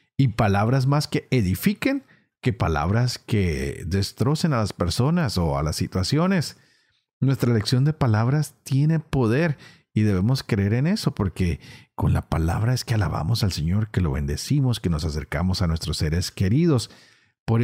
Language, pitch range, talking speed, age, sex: Spanish, 95-140 Hz, 160 wpm, 40-59, male